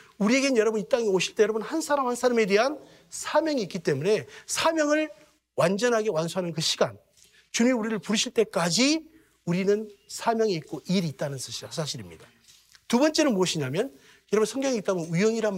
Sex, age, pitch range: male, 40-59, 160-245 Hz